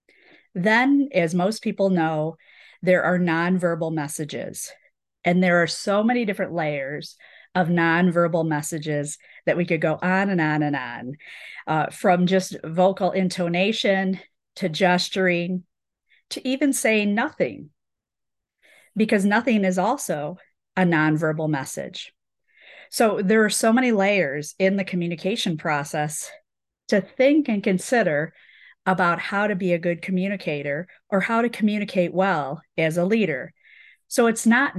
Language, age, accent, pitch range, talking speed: English, 40-59, American, 165-205 Hz, 135 wpm